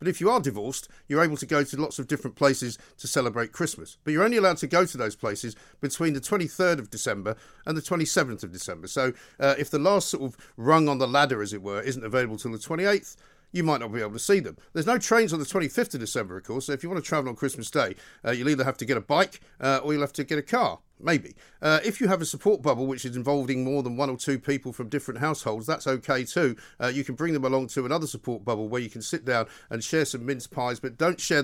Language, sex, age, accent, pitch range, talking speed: English, male, 50-69, British, 130-165 Hz, 275 wpm